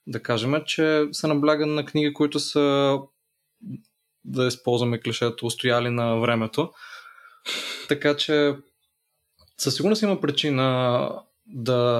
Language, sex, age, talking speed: Bulgarian, male, 20-39, 115 wpm